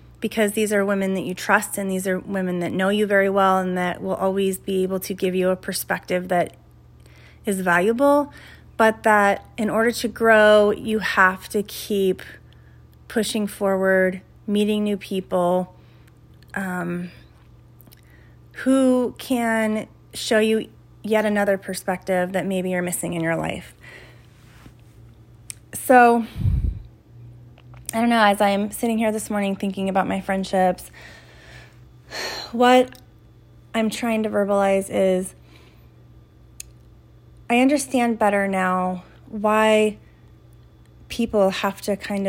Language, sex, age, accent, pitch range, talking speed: English, female, 30-49, American, 175-210 Hz, 125 wpm